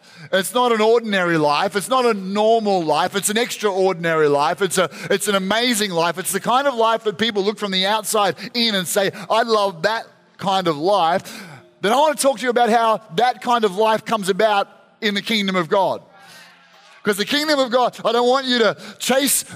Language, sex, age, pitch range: English, male, 30-49, 195-230 Hz